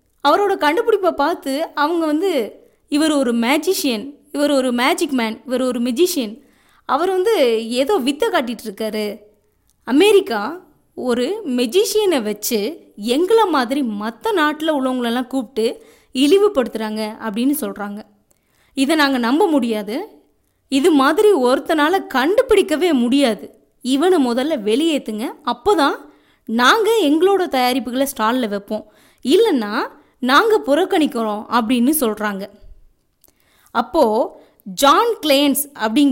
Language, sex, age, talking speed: English, female, 20-39, 95 wpm